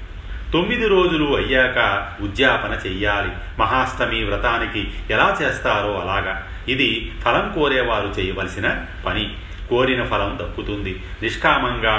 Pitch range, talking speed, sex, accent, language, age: 95-115 Hz, 95 wpm, male, native, Telugu, 40-59